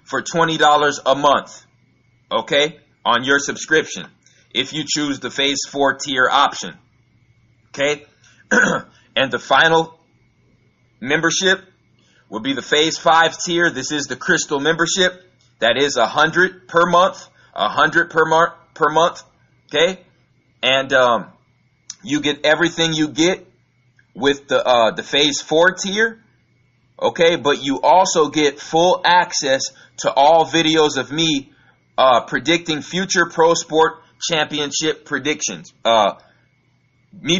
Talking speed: 130 wpm